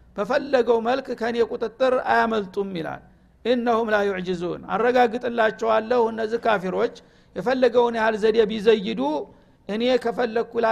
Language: Amharic